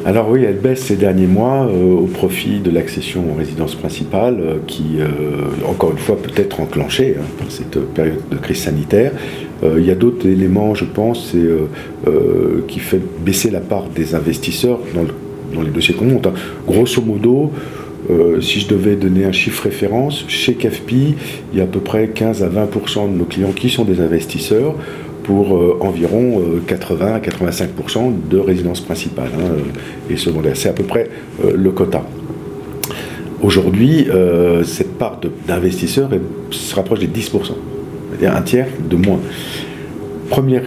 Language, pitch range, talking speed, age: French, 85-110 Hz, 165 wpm, 50-69